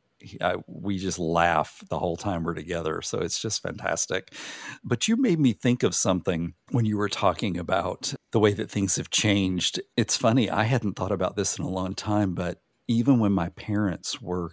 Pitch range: 90-105 Hz